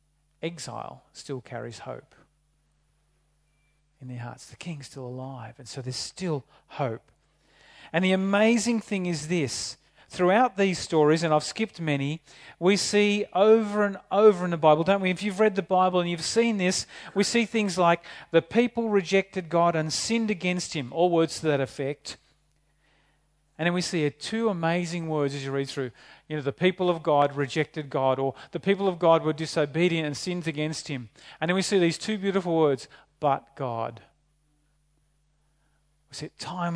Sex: male